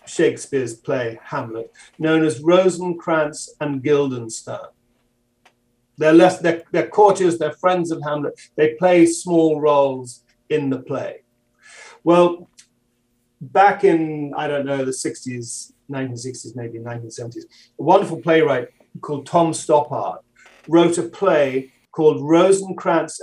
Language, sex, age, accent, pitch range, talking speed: English, male, 50-69, British, 145-175 Hz, 120 wpm